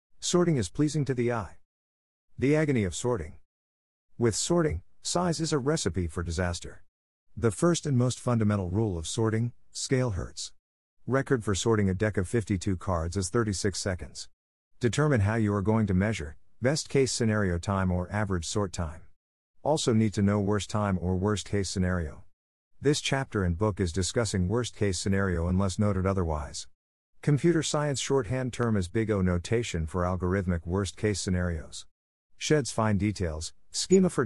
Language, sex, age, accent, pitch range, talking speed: English, male, 50-69, American, 90-115 Hz, 165 wpm